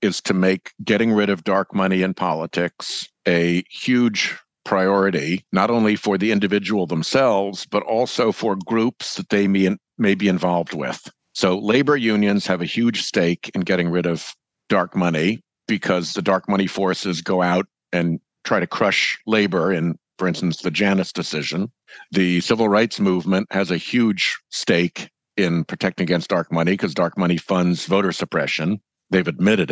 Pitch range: 90-105 Hz